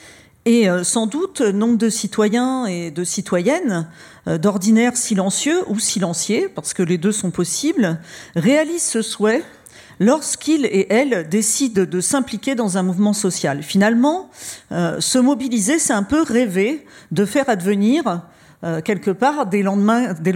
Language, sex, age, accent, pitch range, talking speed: French, female, 50-69, French, 185-245 Hz, 140 wpm